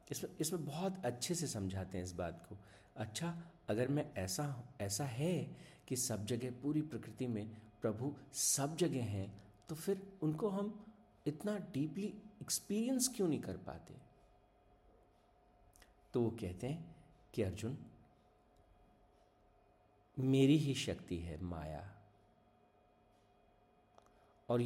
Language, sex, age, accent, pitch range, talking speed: Hindi, male, 50-69, native, 100-145 Hz, 120 wpm